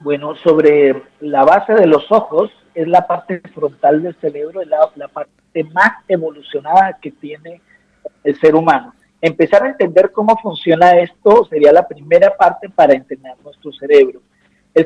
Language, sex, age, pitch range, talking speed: Spanish, male, 50-69, 155-220 Hz, 155 wpm